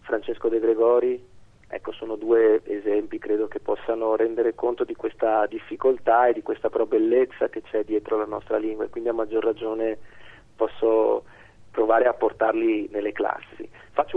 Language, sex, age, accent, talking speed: Italian, male, 40-59, native, 155 wpm